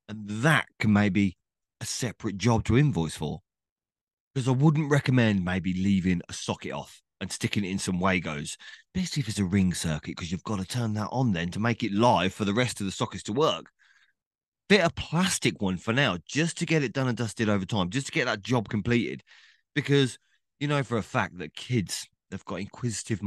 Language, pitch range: English, 100-155 Hz